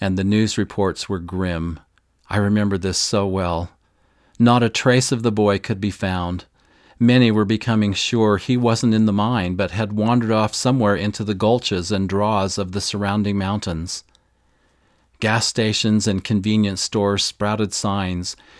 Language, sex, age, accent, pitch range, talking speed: English, male, 40-59, American, 100-115 Hz, 160 wpm